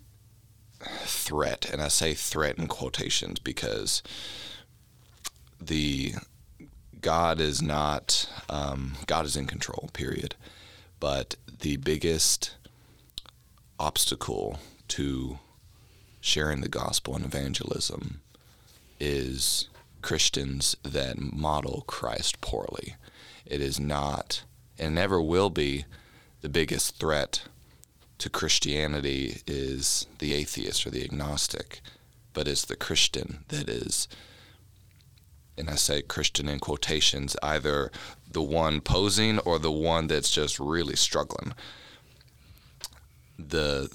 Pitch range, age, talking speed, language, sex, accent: 70-85 Hz, 30-49, 105 wpm, English, male, American